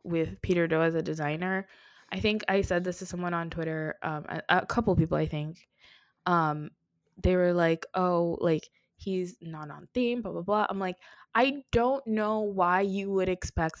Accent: American